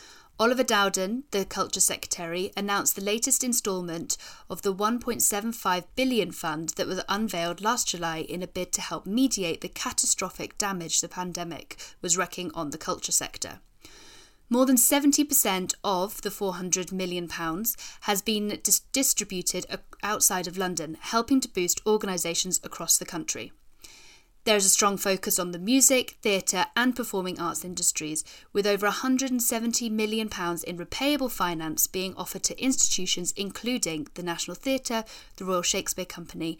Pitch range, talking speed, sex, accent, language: 180-230 Hz, 145 wpm, female, British, English